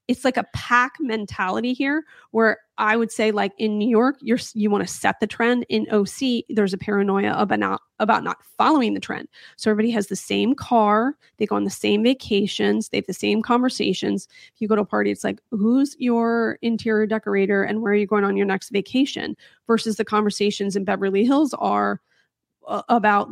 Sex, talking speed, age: female, 205 wpm, 30-49